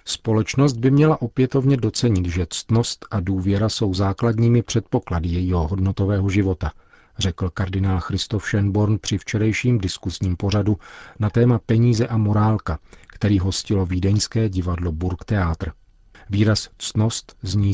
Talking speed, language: 120 wpm, Czech